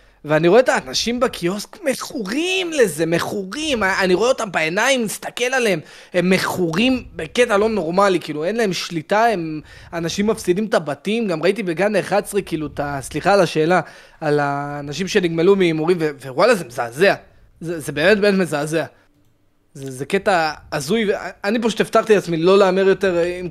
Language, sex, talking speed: Hebrew, male, 155 wpm